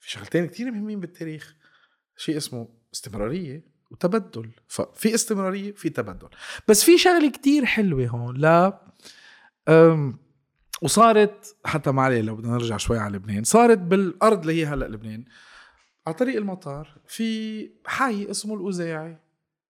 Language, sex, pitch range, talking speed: Arabic, male, 120-200 Hz, 135 wpm